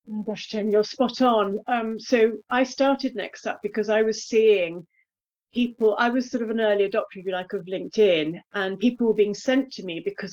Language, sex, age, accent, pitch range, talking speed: English, female, 40-59, British, 200-255 Hz, 215 wpm